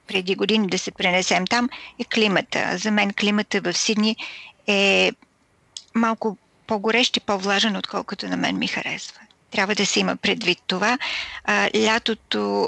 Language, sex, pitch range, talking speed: Bulgarian, female, 200-235 Hz, 145 wpm